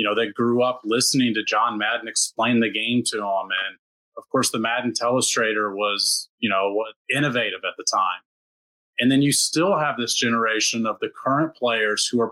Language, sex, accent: English, male, American